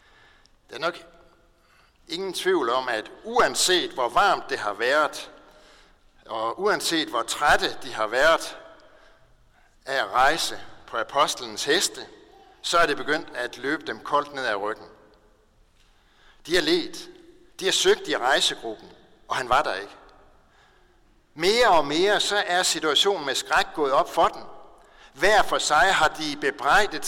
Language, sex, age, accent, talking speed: Danish, male, 60-79, native, 150 wpm